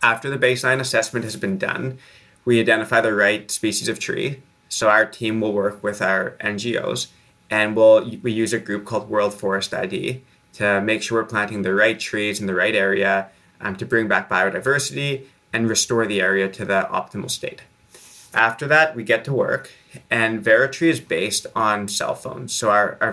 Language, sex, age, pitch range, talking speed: English, male, 20-39, 105-120 Hz, 185 wpm